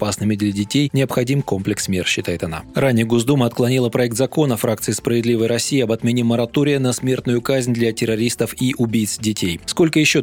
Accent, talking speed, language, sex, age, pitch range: native, 170 wpm, Russian, male, 20-39, 110-135 Hz